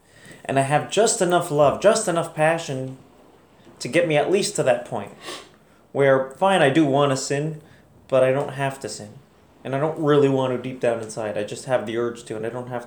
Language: English